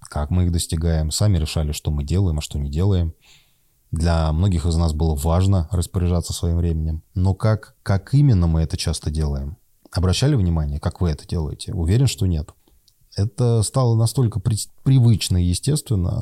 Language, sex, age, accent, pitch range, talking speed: Russian, male, 20-39, native, 80-110 Hz, 165 wpm